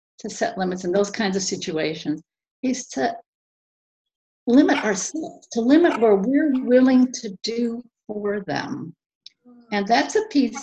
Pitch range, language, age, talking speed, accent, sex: 200-265 Hz, English, 50-69, 140 wpm, American, female